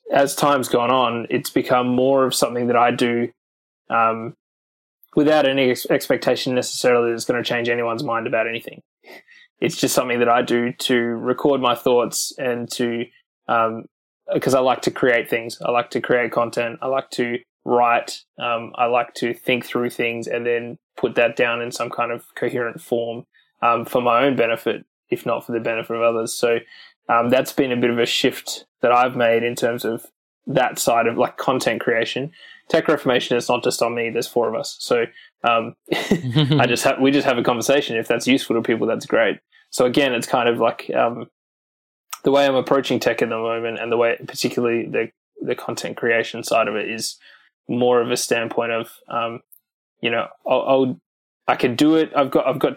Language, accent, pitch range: English, Australian, 115-130 Hz